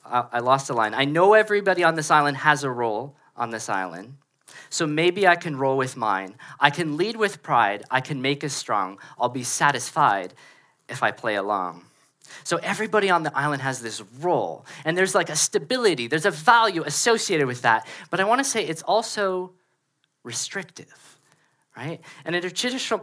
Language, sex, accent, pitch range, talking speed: English, male, American, 140-185 Hz, 190 wpm